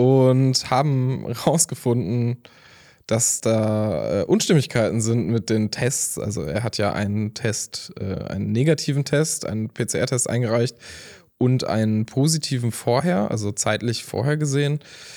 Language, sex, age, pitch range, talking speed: German, male, 10-29, 110-140 Hz, 120 wpm